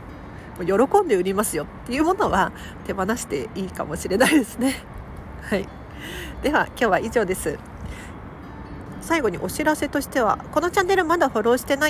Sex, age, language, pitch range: female, 40-59, Japanese, 200-300 Hz